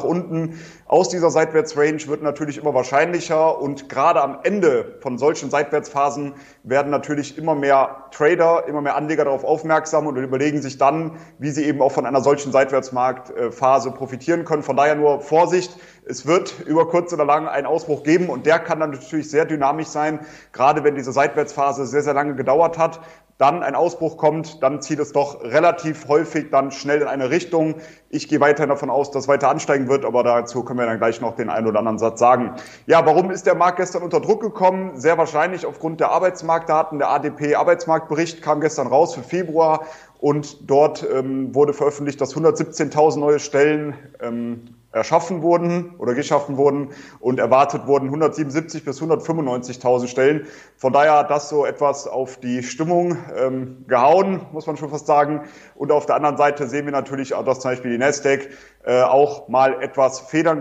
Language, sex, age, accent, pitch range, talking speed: German, male, 30-49, German, 135-160 Hz, 180 wpm